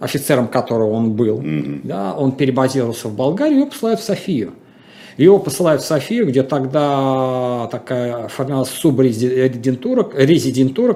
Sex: male